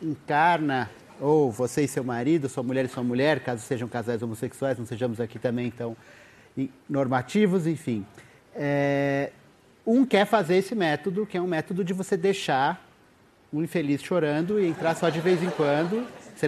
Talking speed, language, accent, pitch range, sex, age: 170 wpm, Portuguese, Brazilian, 135-180 Hz, male, 30-49